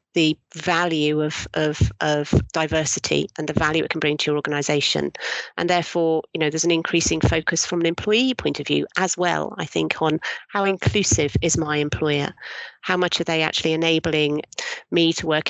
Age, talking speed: 40-59, 185 wpm